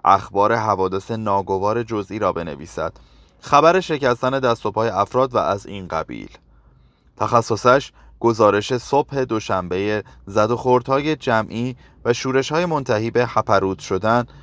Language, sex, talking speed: Persian, male, 115 wpm